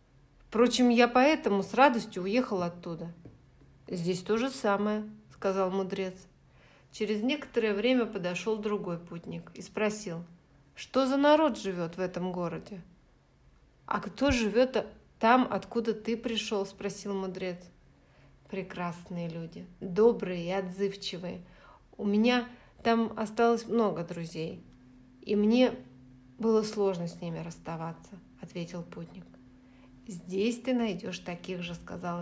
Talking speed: 115 wpm